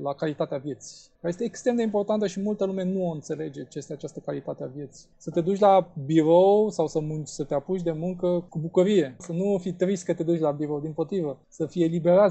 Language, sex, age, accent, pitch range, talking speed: Romanian, male, 20-39, native, 160-200 Hz, 240 wpm